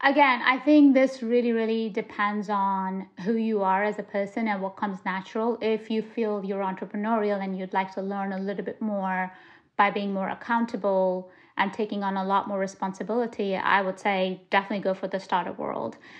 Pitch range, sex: 195-230 Hz, female